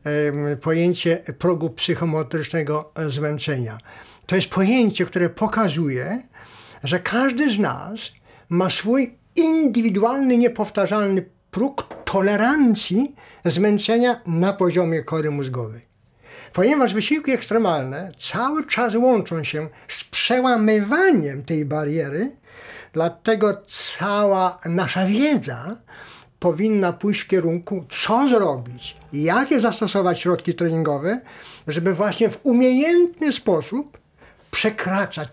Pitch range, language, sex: 165-230 Hz, Polish, male